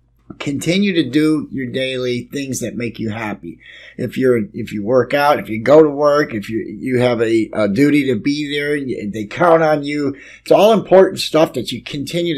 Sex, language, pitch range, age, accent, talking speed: male, English, 135-170 Hz, 50-69, American, 210 wpm